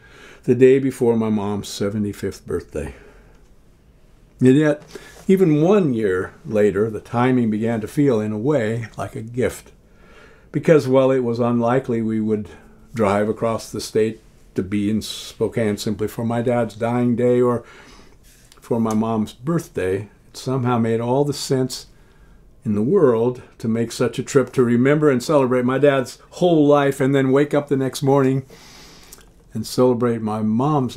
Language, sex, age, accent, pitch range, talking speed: English, male, 50-69, American, 110-135 Hz, 160 wpm